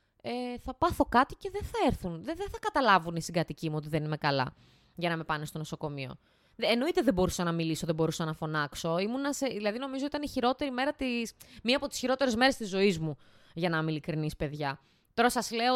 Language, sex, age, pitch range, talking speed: Greek, female, 20-39, 165-230 Hz, 225 wpm